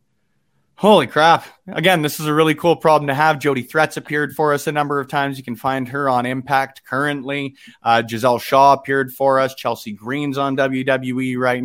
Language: English